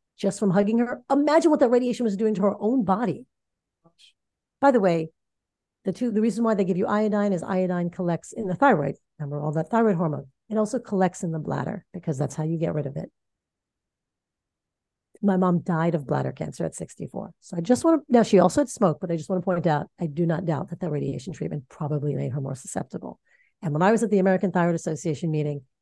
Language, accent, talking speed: English, American, 230 wpm